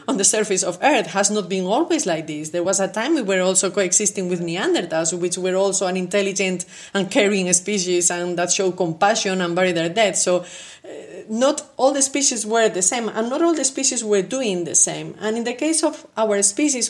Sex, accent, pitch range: female, Spanish, 195-255 Hz